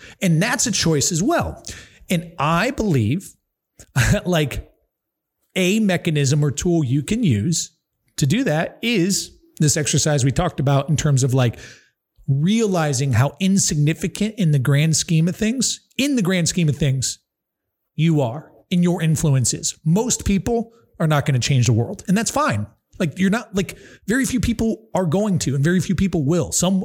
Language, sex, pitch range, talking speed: English, male, 140-185 Hz, 175 wpm